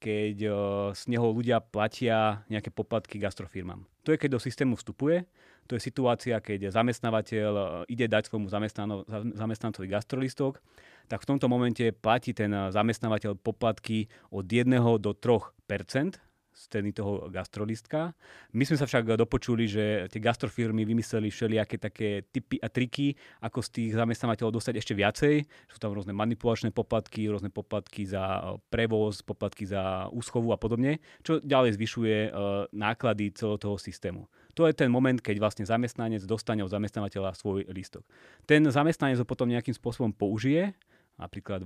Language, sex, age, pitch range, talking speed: Slovak, male, 30-49, 105-125 Hz, 150 wpm